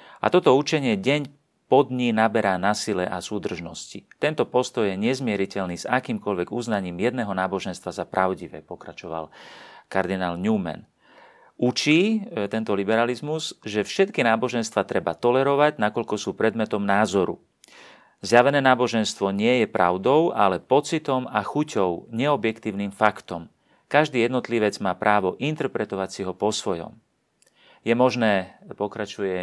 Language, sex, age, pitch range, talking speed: Slovak, male, 40-59, 100-125 Hz, 125 wpm